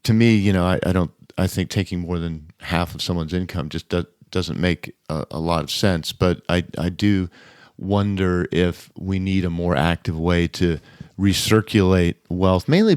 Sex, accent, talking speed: male, American, 190 wpm